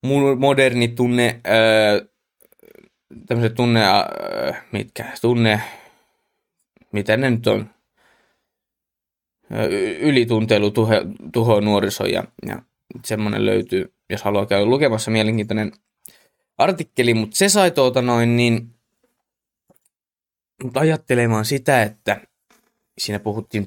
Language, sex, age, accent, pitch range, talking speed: Finnish, male, 20-39, native, 105-120 Hz, 85 wpm